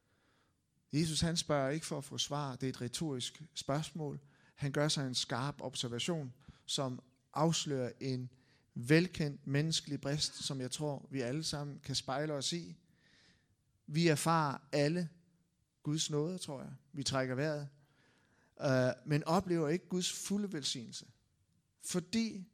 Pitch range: 130-160 Hz